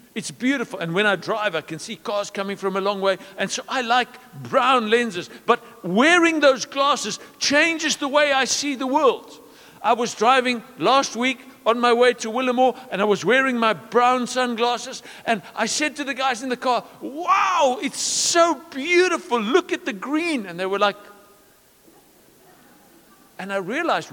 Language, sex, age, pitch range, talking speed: English, male, 60-79, 210-285 Hz, 180 wpm